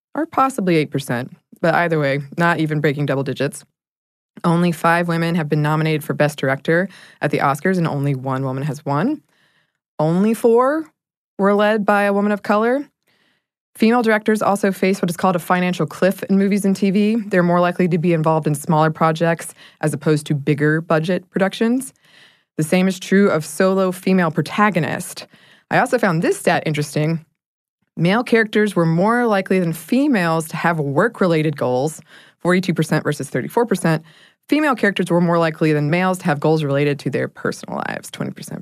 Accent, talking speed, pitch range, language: American, 175 wpm, 155-205 Hz, English